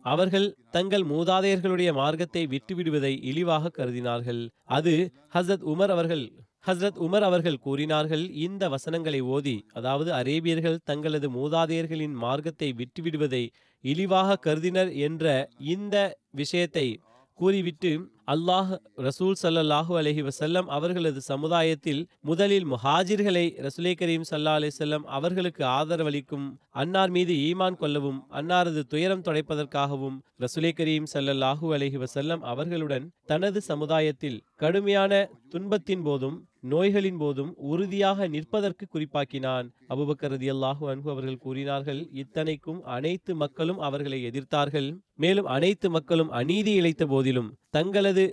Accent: native